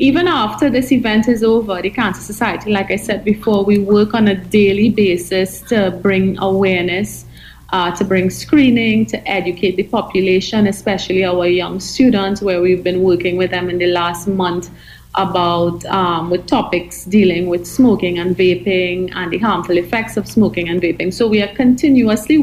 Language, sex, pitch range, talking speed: English, female, 190-240 Hz, 175 wpm